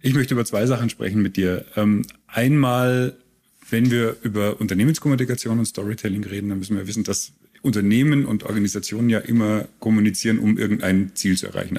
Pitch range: 100-125 Hz